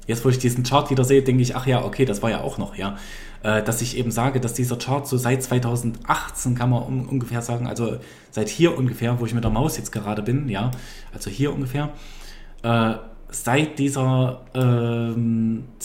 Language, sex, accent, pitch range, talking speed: German, male, German, 115-135 Hz, 200 wpm